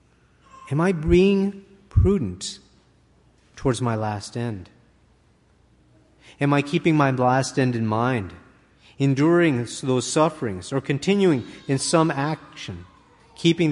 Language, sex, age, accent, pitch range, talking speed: English, male, 40-59, American, 120-160 Hz, 110 wpm